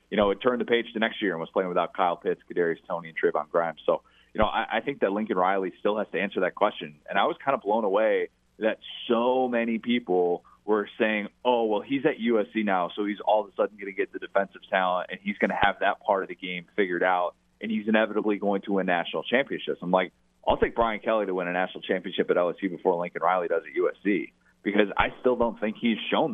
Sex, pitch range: male, 95-125 Hz